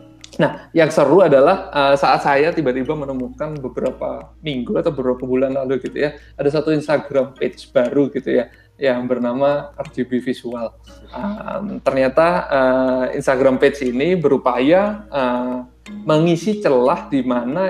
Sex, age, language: male, 20-39, Indonesian